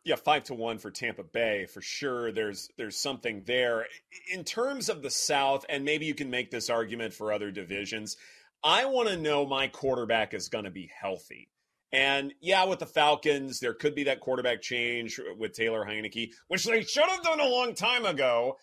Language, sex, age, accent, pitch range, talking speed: English, male, 30-49, American, 125-205 Hz, 195 wpm